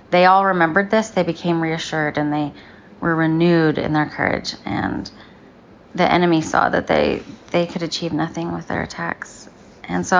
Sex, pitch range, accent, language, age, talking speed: female, 165-185 Hz, American, English, 20-39, 170 wpm